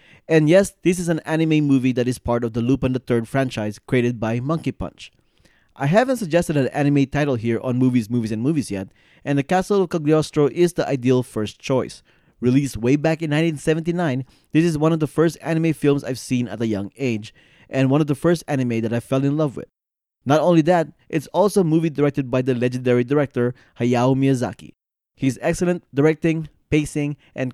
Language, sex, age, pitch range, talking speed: English, male, 20-39, 125-160 Hz, 205 wpm